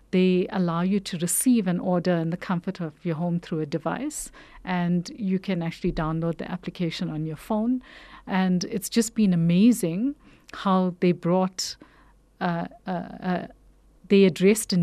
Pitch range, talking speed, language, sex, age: 175-210 Hz, 160 wpm, English, female, 50-69